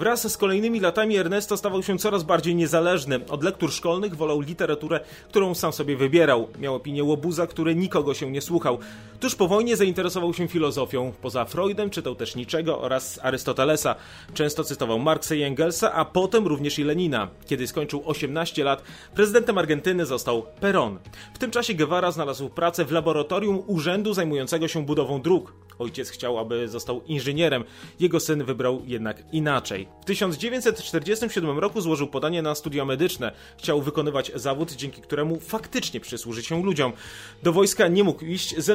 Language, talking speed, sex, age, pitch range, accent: Polish, 160 wpm, male, 30-49, 140-185 Hz, native